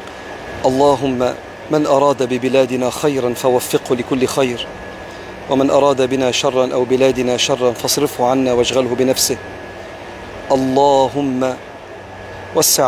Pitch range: 125-140 Hz